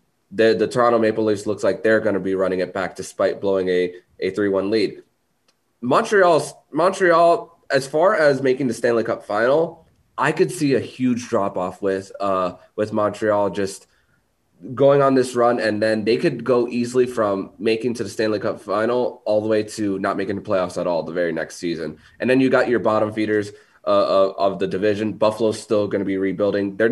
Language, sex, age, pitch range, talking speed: English, male, 20-39, 95-120 Hz, 205 wpm